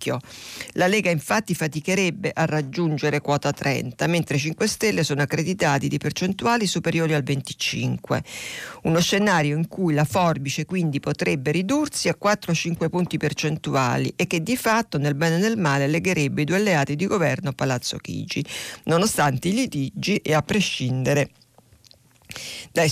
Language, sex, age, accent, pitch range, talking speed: Italian, female, 50-69, native, 145-180 Hz, 145 wpm